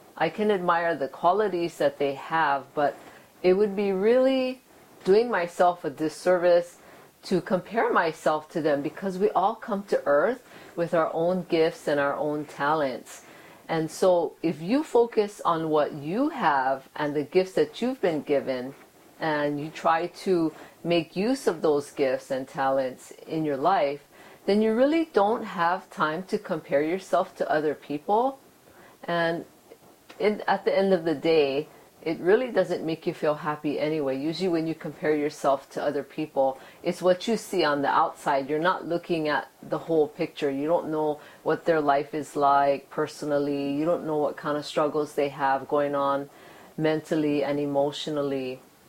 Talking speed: 170 wpm